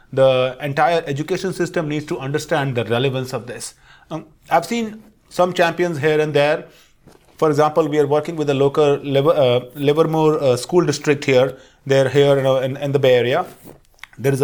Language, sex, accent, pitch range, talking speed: English, male, Indian, 135-160 Hz, 175 wpm